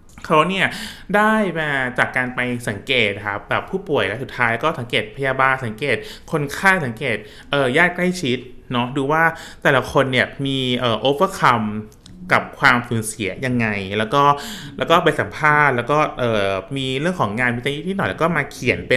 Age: 20-39